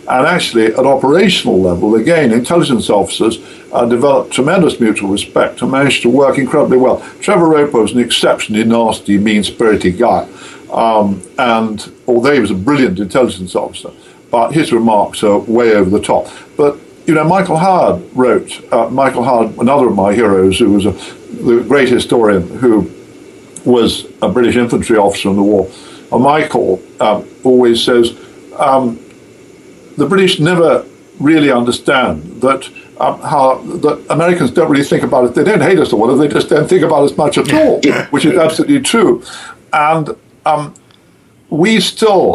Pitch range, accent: 115-165 Hz, British